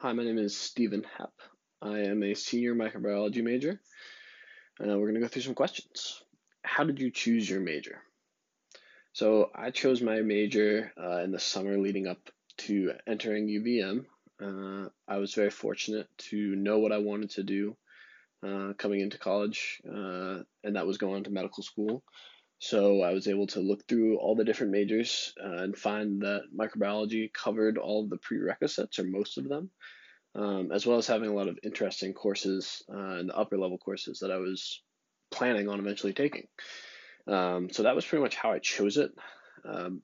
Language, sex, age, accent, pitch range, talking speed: English, male, 20-39, American, 100-110 Hz, 185 wpm